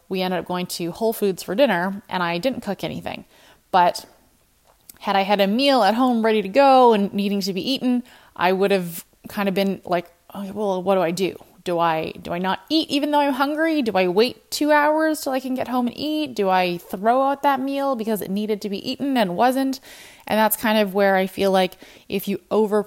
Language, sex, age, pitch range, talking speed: English, female, 20-39, 180-245 Hz, 230 wpm